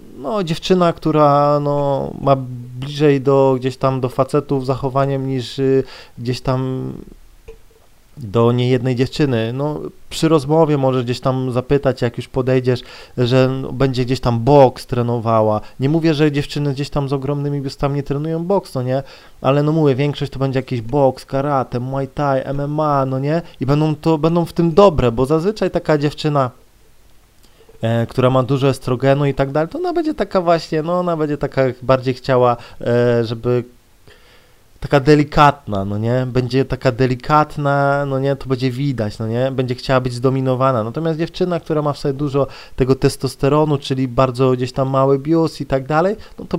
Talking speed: 170 wpm